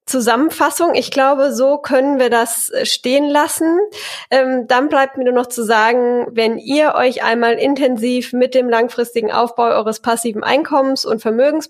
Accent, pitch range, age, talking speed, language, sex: German, 225-270 Hz, 10-29, 160 wpm, German, female